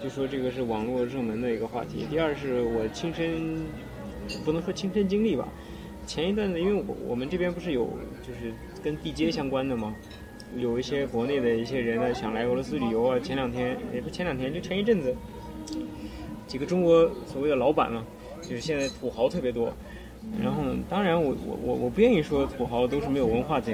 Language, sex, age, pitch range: Chinese, male, 20-39, 120-165 Hz